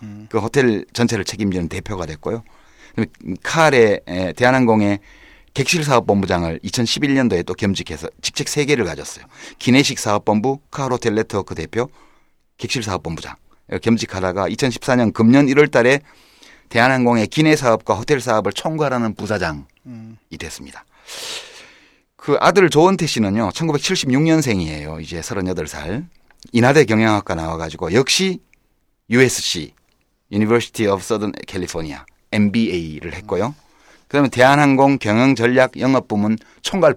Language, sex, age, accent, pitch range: Korean, male, 30-49, native, 95-135 Hz